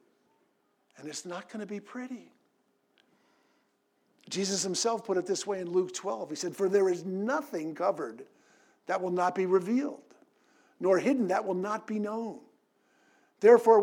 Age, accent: 50-69, American